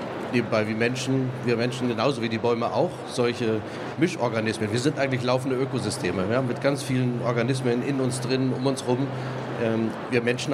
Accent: German